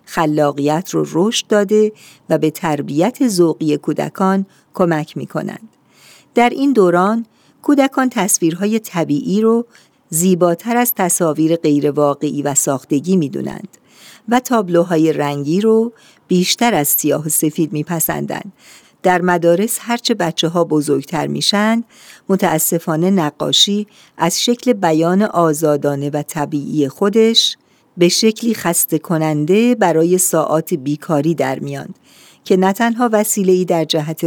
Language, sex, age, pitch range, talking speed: Persian, female, 50-69, 150-205 Hz, 115 wpm